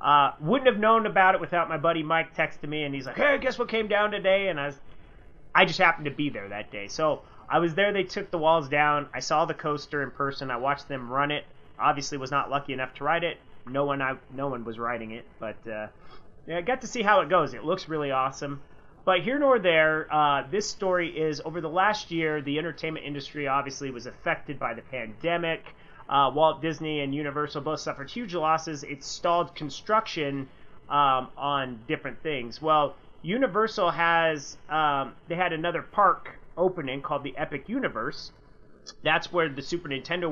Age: 30-49